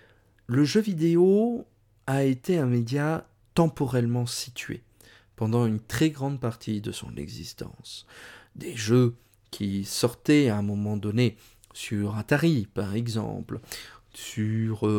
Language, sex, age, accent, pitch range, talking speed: French, male, 40-59, French, 105-145 Hz, 120 wpm